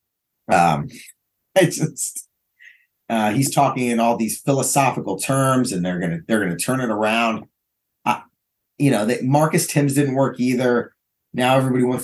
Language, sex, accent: English, male, American